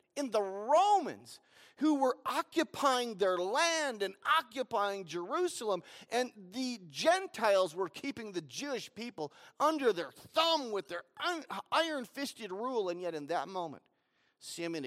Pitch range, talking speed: 140-200 Hz, 135 wpm